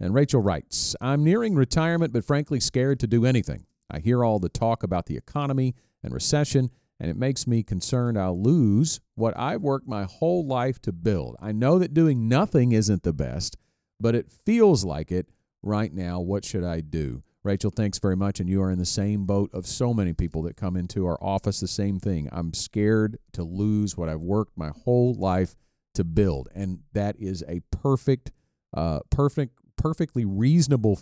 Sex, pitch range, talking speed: male, 90-125 Hz, 190 wpm